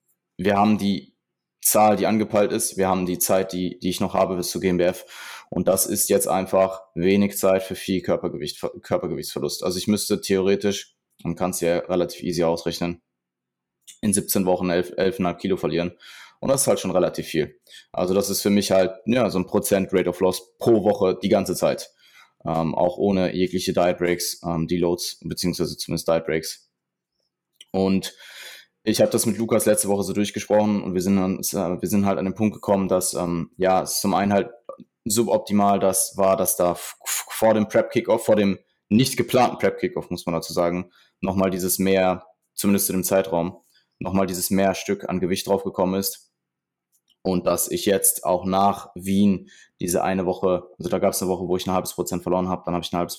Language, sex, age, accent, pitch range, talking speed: German, male, 20-39, German, 90-100 Hz, 200 wpm